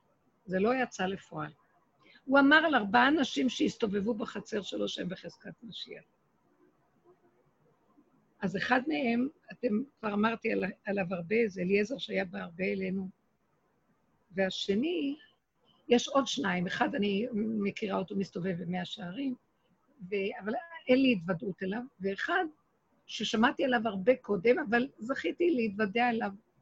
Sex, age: female, 50-69